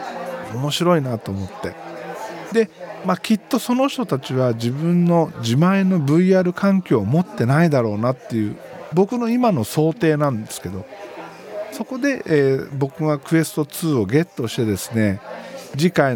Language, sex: Japanese, male